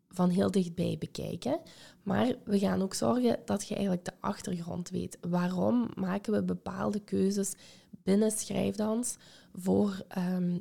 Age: 20-39